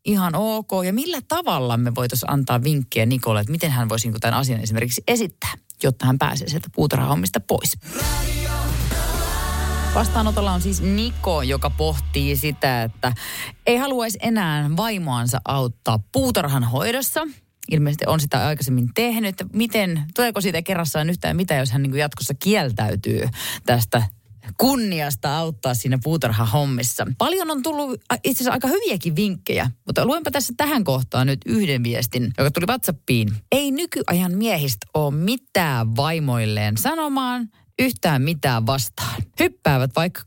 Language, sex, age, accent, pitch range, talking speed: Finnish, female, 30-49, native, 120-200 Hz, 135 wpm